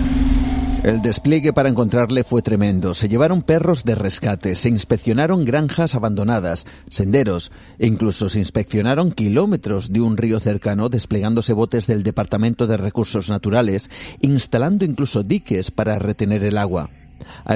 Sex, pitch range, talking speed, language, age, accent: male, 105-135 Hz, 135 wpm, Spanish, 40-59, Spanish